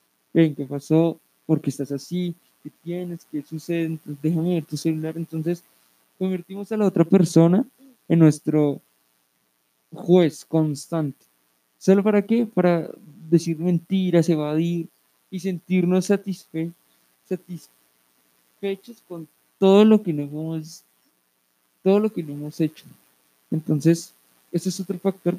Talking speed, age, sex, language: 115 wpm, 20-39, male, Spanish